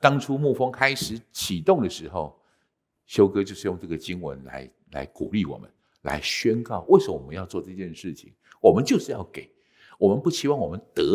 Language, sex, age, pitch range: Chinese, male, 50-69, 85-130 Hz